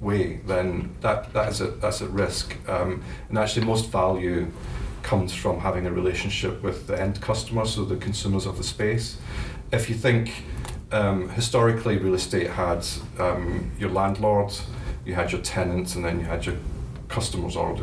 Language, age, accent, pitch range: English, 40-59, British, 85-100 Hz